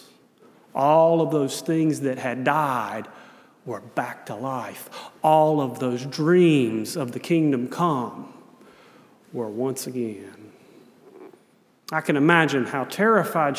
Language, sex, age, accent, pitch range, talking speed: English, male, 40-59, American, 155-235 Hz, 120 wpm